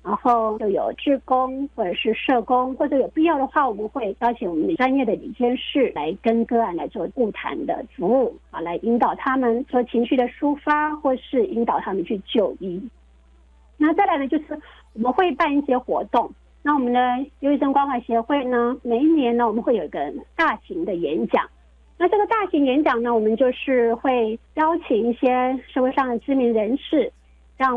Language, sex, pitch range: Chinese, female, 235-285 Hz